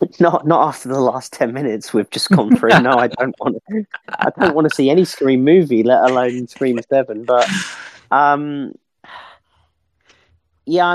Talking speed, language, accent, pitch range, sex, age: 170 wpm, English, British, 100-140 Hz, male, 30-49